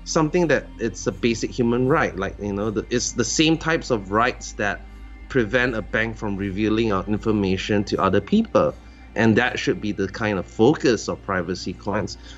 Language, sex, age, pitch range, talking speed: English, male, 20-39, 95-125 Hz, 185 wpm